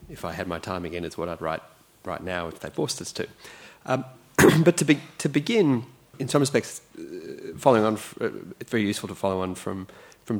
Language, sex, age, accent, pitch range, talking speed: English, male, 30-49, Australian, 90-120 Hz, 210 wpm